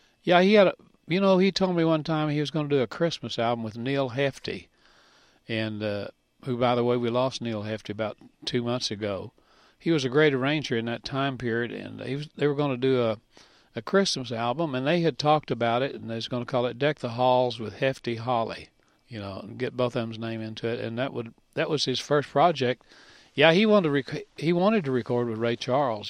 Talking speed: 240 wpm